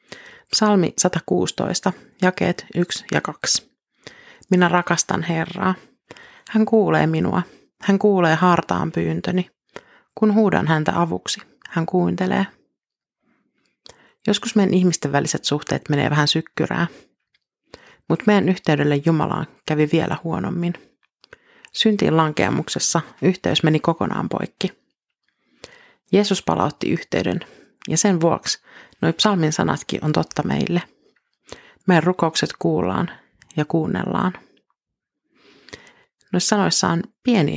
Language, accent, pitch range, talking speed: Finnish, native, 155-205 Hz, 100 wpm